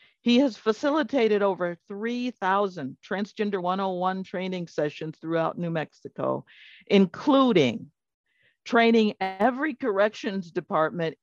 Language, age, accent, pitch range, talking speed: English, 50-69, American, 195-225 Hz, 90 wpm